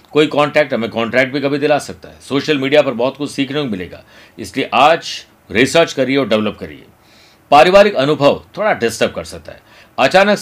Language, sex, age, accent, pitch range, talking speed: Hindi, male, 50-69, native, 120-160 Hz, 185 wpm